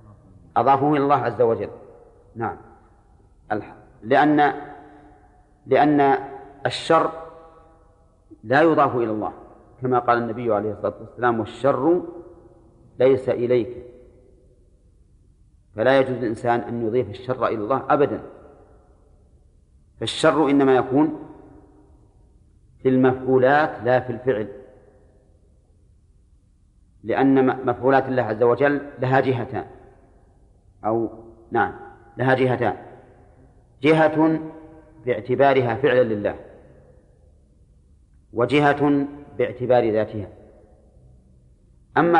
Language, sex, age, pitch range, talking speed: Arabic, male, 40-59, 100-140 Hz, 80 wpm